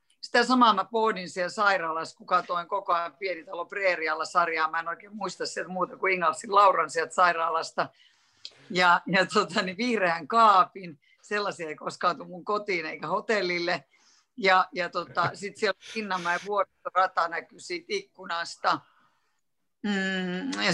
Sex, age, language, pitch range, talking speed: female, 50-69, Finnish, 175-215 Hz, 145 wpm